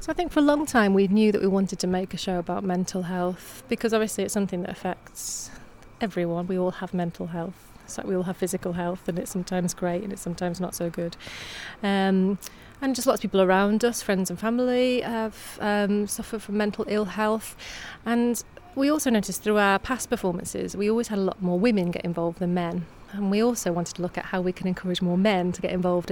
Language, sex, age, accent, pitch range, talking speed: English, female, 30-49, British, 180-215 Hz, 230 wpm